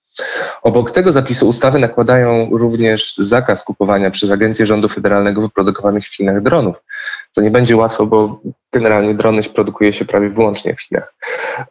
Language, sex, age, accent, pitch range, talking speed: Polish, male, 20-39, native, 105-120 Hz, 150 wpm